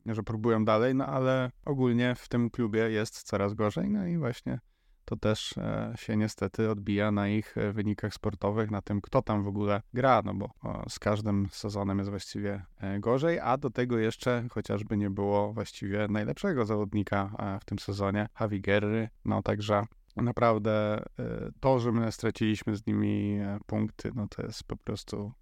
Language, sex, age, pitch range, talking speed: Polish, male, 20-39, 100-120 Hz, 160 wpm